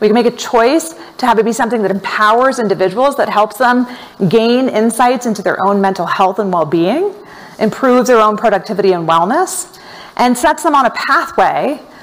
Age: 30-49